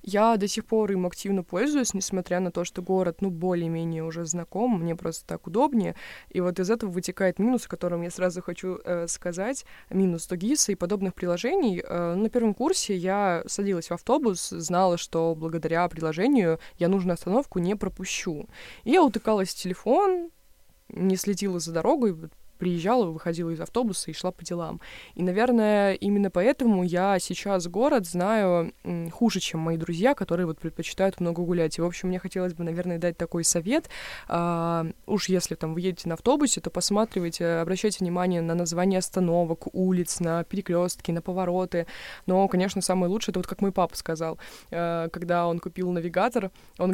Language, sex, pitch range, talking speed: Russian, female, 175-200 Hz, 165 wpm